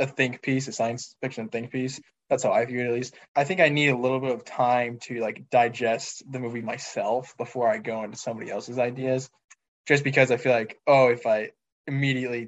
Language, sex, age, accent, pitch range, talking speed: English, male, 10-29, American, 115-130 Hz, 220 wpm